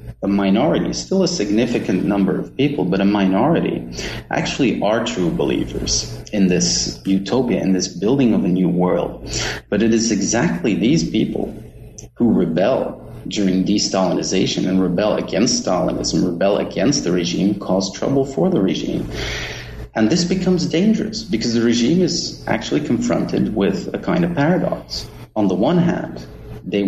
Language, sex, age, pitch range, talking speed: English, male, 30-49, 95-120 Hz, 150 wpm